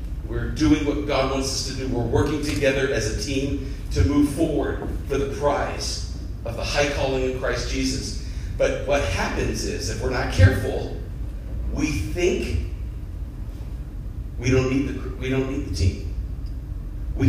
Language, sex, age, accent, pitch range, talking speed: English, male, 40-59, American, 95-145 Hz, 165 wpm